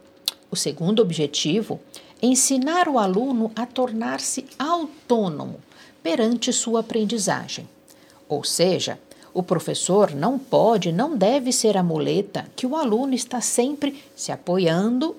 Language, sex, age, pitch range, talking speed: Italian, female, 60-79, 180-255 Hz, 125 wpm